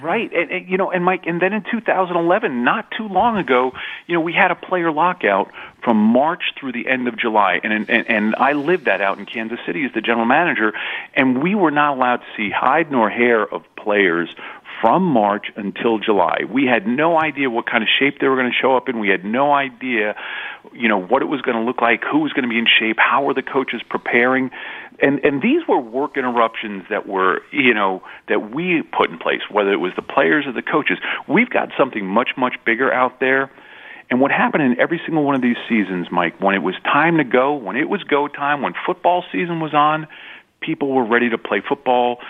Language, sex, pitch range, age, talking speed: English, male, 115-160 Hz, 40-59, 230 wpm